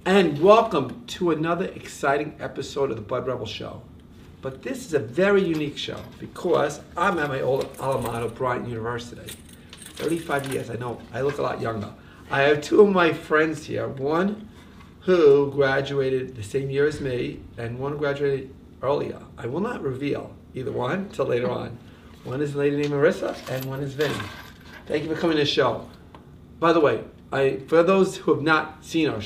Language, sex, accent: English, male, American